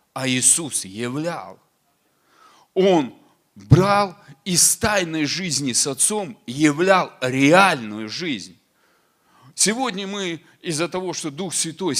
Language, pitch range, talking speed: Russian, 135-190 Hz, 100 wpm